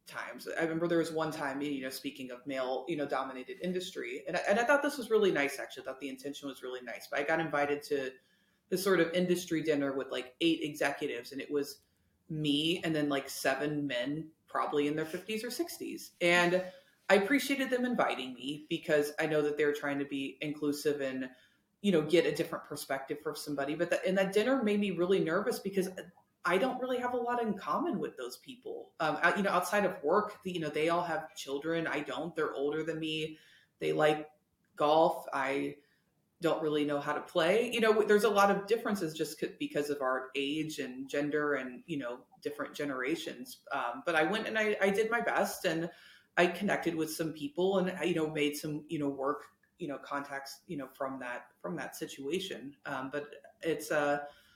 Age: 30-49